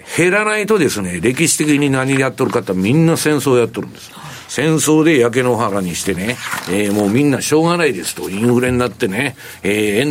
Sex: male